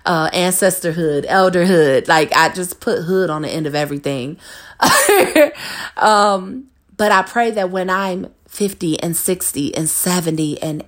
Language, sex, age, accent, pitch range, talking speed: English, female, 30-49, American, 165-220 Hz, 145 wpm